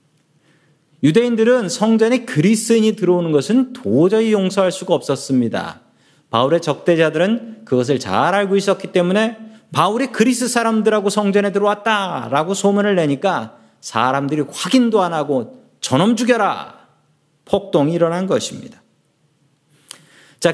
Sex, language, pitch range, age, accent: male, Korean, 145-220 Hz, 40-59, native